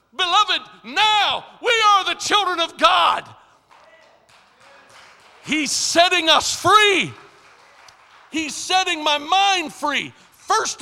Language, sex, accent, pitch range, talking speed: English, male, American, 195-270 Hz, 100 wpm